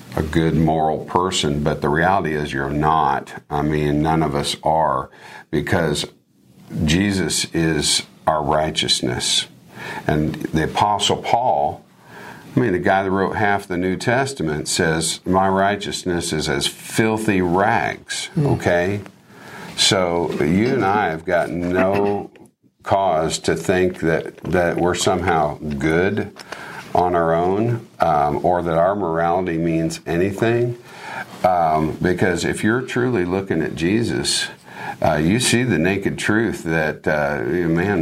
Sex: male